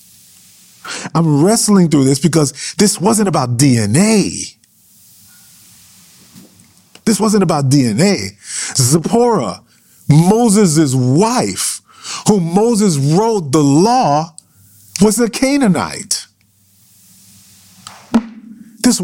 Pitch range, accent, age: 135-215 Hz, American, 40-59